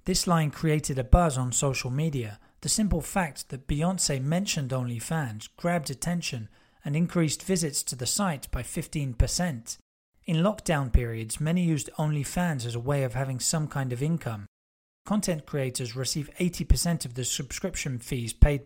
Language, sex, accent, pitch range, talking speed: English, male, British, 130-170 Hz, 160 wpm